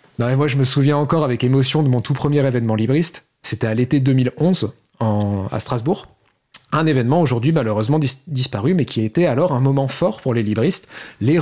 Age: 30-49